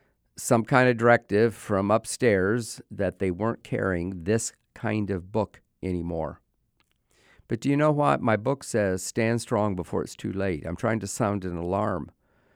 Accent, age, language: American, 50-69, English